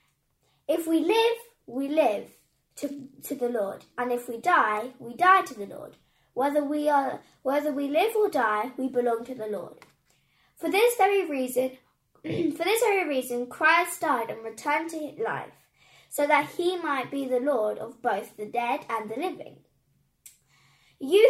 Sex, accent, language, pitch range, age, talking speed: female, British, English, 245-345 Hz, 10-29, 170 wpm